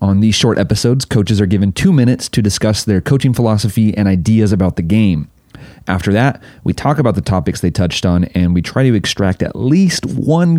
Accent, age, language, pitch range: American, 30-49, English, 100-125 Hz